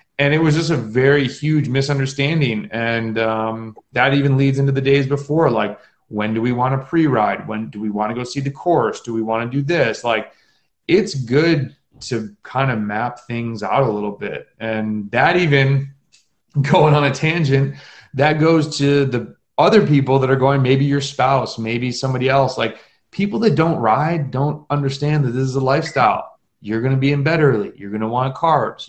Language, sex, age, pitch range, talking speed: English, male, 30-49, 120-150 Hz, 200 wpm